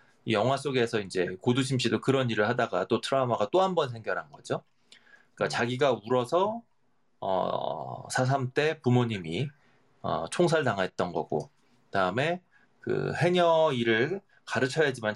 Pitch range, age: 115-160 Hz, 30-49